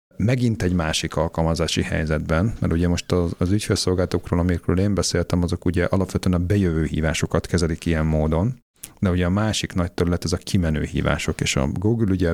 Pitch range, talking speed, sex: 85-95 Hz, 180 wpm, male